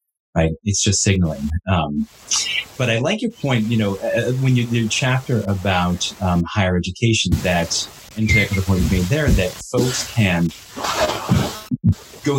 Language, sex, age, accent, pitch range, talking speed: English, male, 30-49, American, 100-120 Hz, 160 wpm